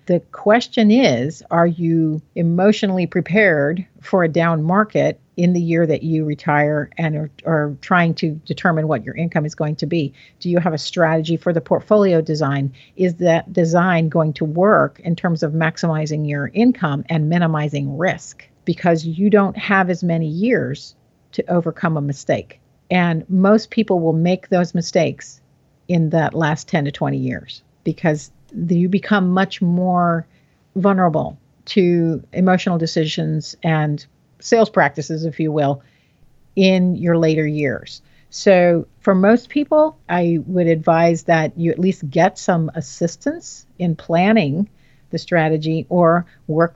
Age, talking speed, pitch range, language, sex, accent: 50-69, 150 wpm, 155-180 Hz, English, female, American